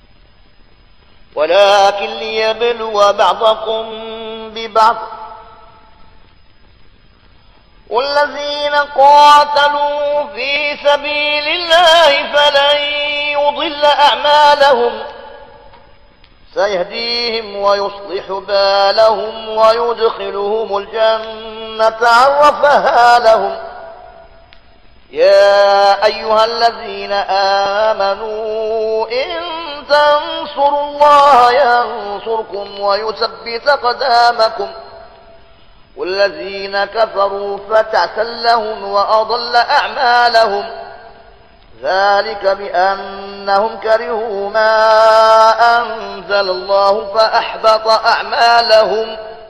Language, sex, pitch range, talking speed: Arabic, male, 200-280 Hz, 50 wpm